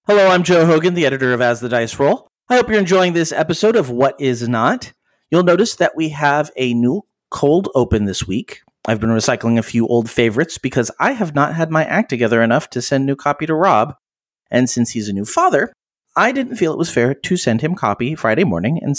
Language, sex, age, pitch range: English, male, 40-59, 120-170 Hz